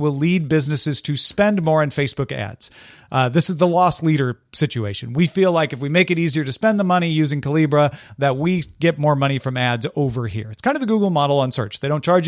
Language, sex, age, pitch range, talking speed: English, male, 40-59, 140-185 Hz, 245 wpm